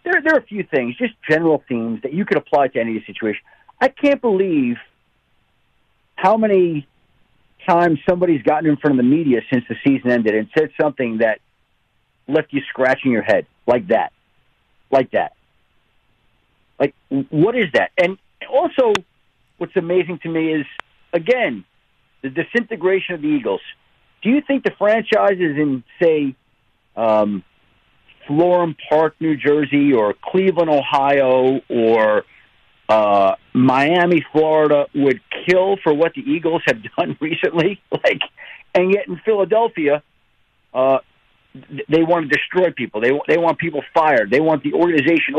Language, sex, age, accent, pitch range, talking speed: English, male, 50-69, American, 140-195 Hz, 145 wpm